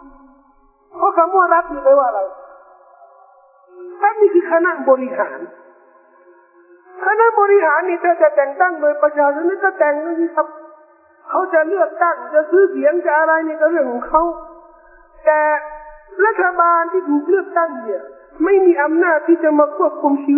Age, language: 50-69, Thai